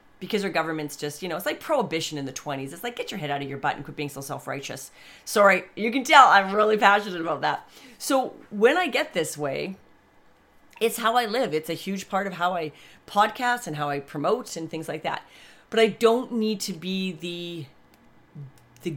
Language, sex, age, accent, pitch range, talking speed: English, female, 40-59, American, 150-200 Hz, 220 wpm